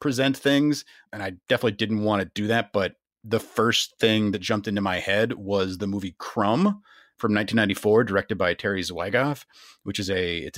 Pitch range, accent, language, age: 95-115 Hz, American, English, 30-49